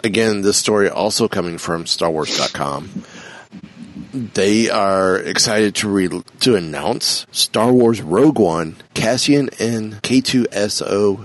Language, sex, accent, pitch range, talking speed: English, male, American, 90-115 Hz, 110 wpm